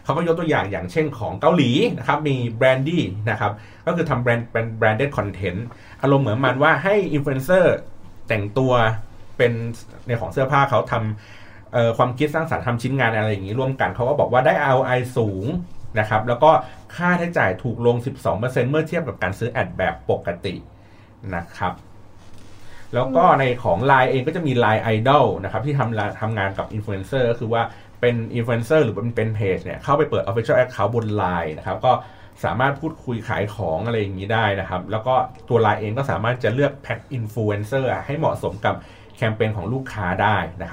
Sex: male